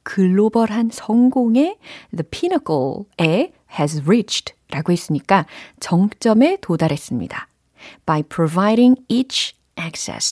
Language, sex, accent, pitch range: Korean, female, native, 165-265 Hz